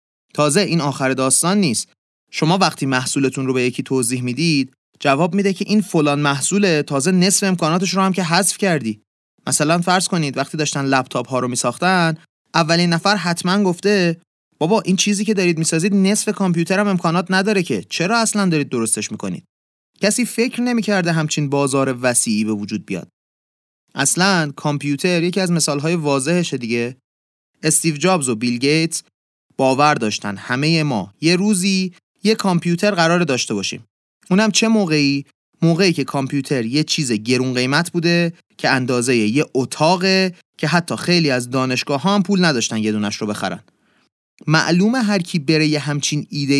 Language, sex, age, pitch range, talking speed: Persian, male, 30-49, 130-185 Hz, 155 wpm